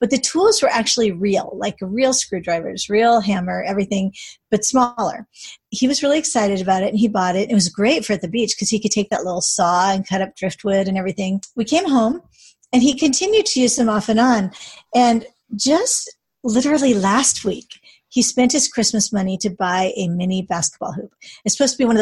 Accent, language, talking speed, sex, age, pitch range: American, English, 215 wpm, female, 40-59, 195-250 Hz